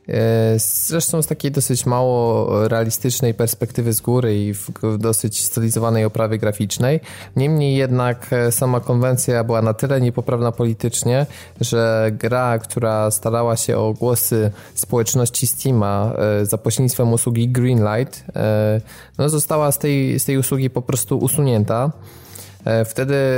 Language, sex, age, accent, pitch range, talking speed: Polish, male, 20-39, native, 110-130 Hz, 120 wpm